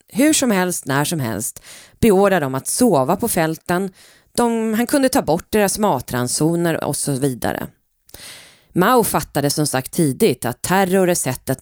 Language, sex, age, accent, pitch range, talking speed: Swedish, female, 30-49, native, 135-210 Hz, 160 wpm